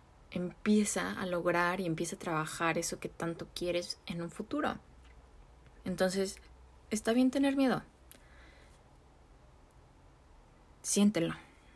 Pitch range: 165-190 Hz